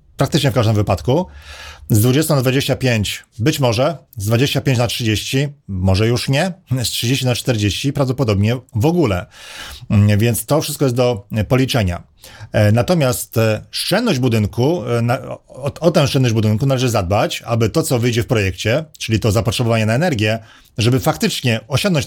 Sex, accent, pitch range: male, native, 110-135 Hz